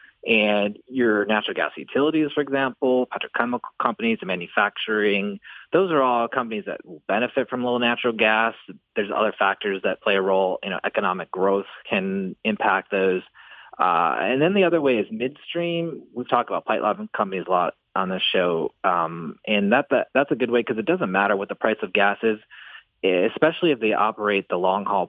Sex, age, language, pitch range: male, 30-49, English, 100-130 Hz